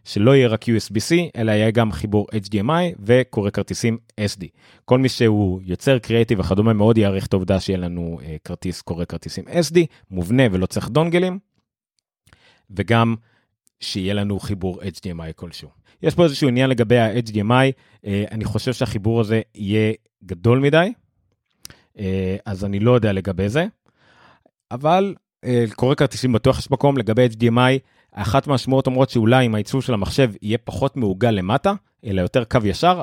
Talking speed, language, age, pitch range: 145 wpm, Hebrew, 30-49, 95-130 Hz